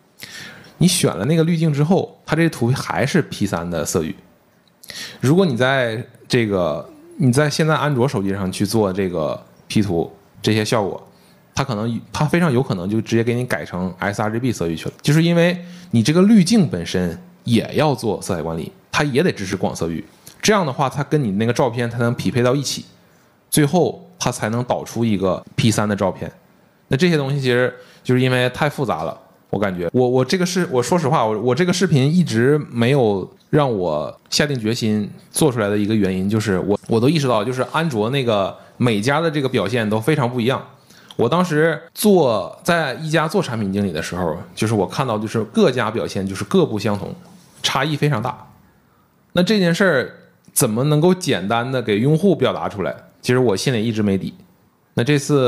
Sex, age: male, 20-39